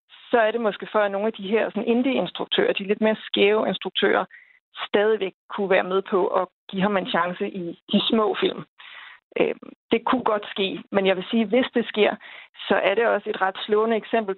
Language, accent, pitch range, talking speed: Danish, native, 190-225 Hz, 210 wpm